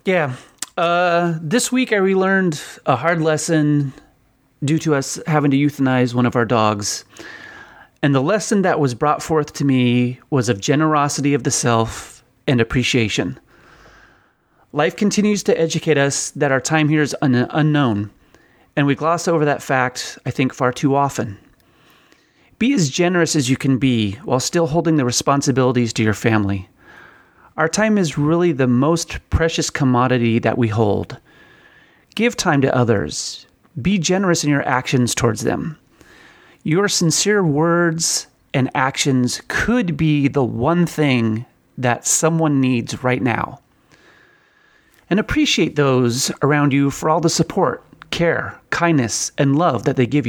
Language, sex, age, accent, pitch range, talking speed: English, male, 30-49, American, 125-165 Hz, 150 wpm